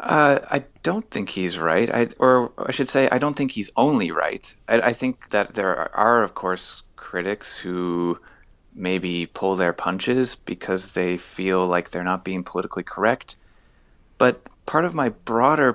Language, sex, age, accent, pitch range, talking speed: English, male, 30-49, American, 90-115 Hz, 170 wpm